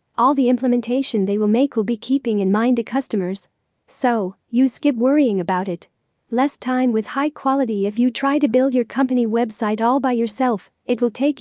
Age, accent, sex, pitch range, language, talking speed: 40-59, American, female, 220-255 Hz, English, 200 wpm